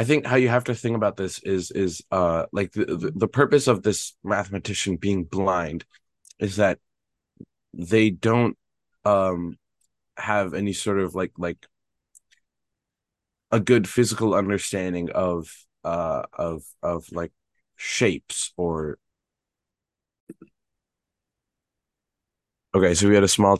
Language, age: English, 20-39